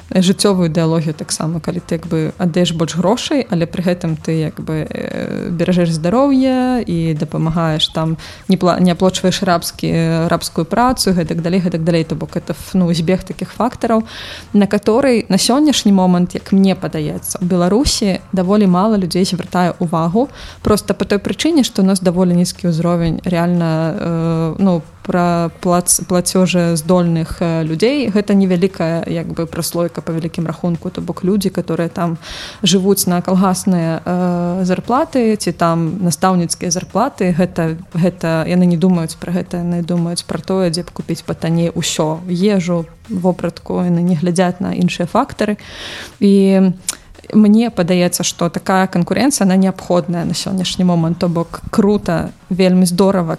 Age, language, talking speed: 20-39, Russian, 150 wpm